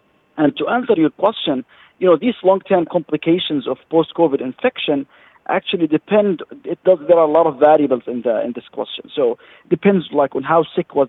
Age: 40-59